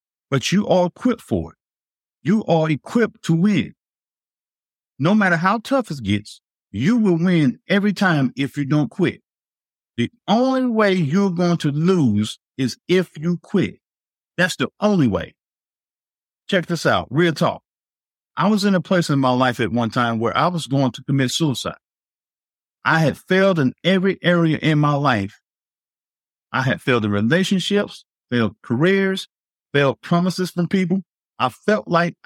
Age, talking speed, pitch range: 50-69, 160 wpm, 140-195 Hz